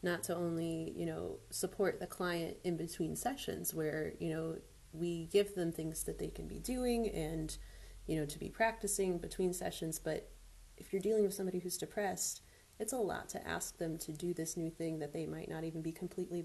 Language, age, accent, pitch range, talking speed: English, 30-49, American, 155-180 Hz, 210 wpm